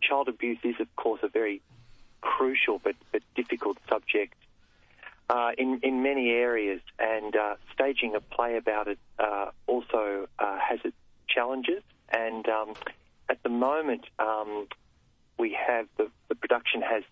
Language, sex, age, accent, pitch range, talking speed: English, male, 40-59, Australian, 105-120 Hz, 145 wpm